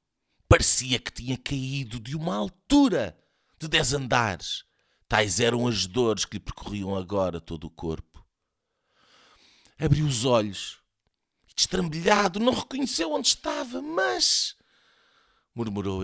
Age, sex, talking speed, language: 50-69, male, 120 wpm, Portuguese